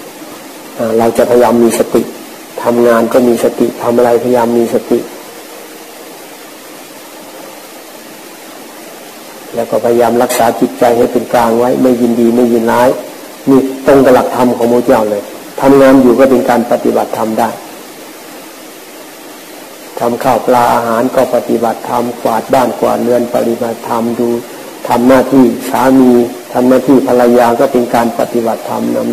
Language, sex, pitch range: Thai, male, 115-130 Hz